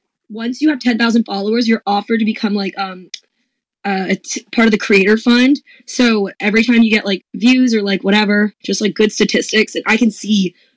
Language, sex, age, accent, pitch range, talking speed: English, female, 20-39, American, 205-245 Hz, 210 wpm